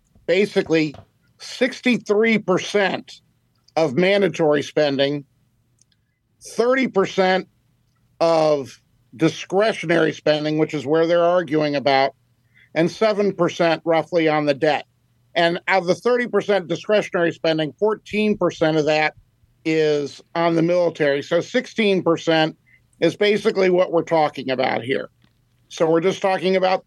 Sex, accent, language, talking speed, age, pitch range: male, American, English, 110 wpm, 50-69, 140-185 Hz